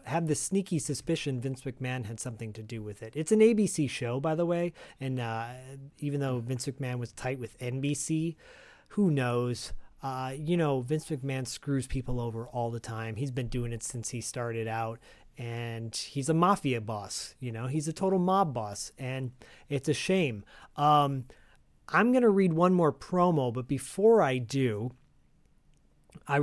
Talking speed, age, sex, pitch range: 175 wpm, 30-49, male, 120-155 Hz